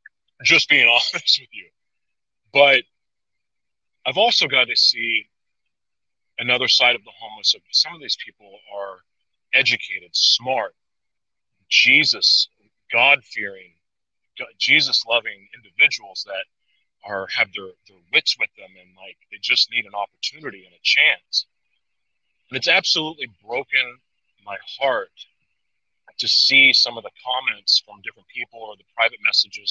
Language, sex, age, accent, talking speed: English, male, 30-49, American, 135 wpm